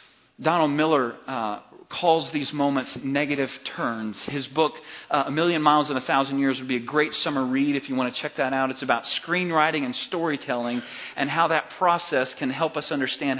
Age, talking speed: 40-59, 195 wpm